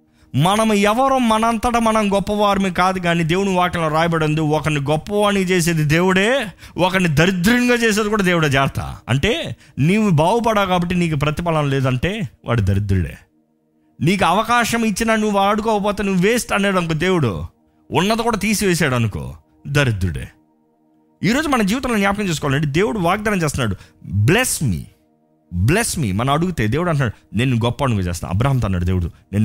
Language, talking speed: Telugu, 135 wpm